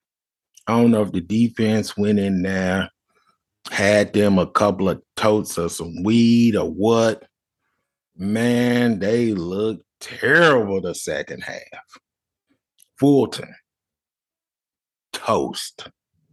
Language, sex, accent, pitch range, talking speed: English, male, American, 105-150 Hz, 105 wpm